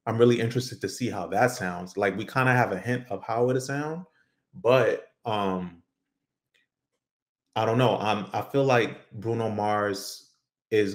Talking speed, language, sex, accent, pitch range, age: 175 wpm, English, male, American, 95-120 Hz, 30-49